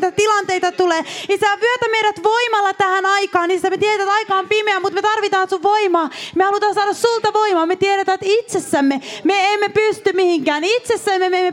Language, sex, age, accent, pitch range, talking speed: Finnish, female, 20-39, native, 315-395 Hz, 185 wpm